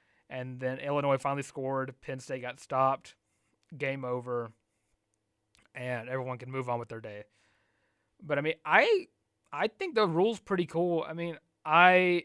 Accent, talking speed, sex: American, 155 wpm, male